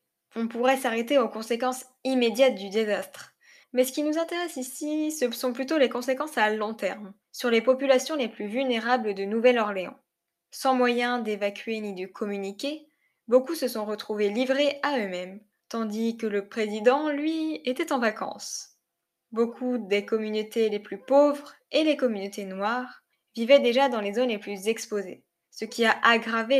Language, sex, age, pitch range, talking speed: French, female, 10-29, 215-270 Hz, 165 wpm